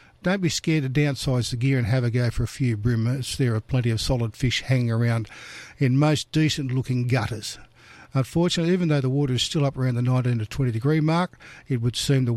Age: 60-79